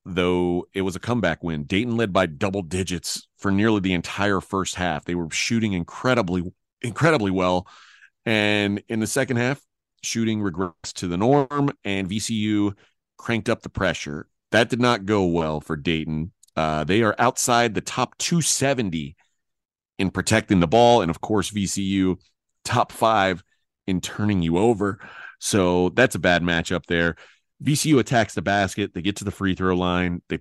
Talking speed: 170 wpm